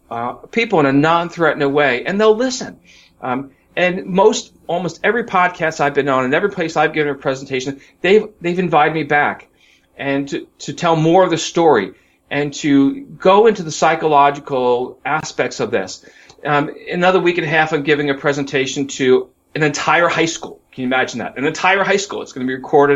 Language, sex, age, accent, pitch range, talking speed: English, male, 40-59, American, 135-175 Hz, 195 wpm